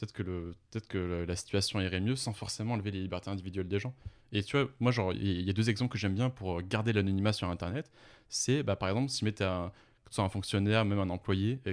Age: 20-39